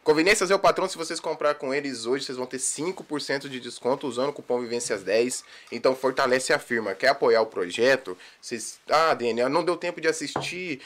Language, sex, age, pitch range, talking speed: Portuguese, male, 20-39, 120-155 Hz, 200 wpm